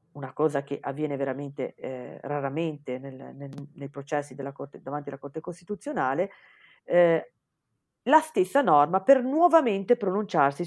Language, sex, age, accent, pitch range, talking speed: Italian, female, 40-59, native, 140-175 Hz, 110 wpm